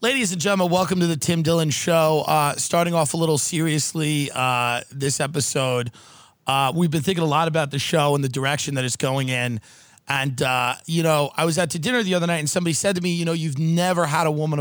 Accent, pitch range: American, 140-175 Hz